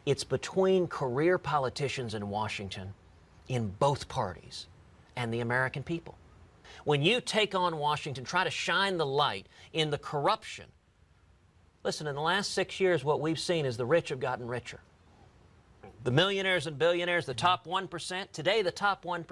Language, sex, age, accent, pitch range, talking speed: English, male, 40-59, American, 115-170 Hz, 160 wpm